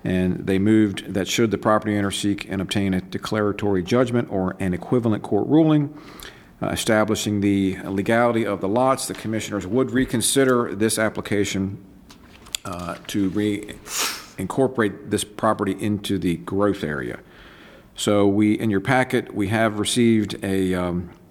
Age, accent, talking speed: 50-69, American, 145 wpm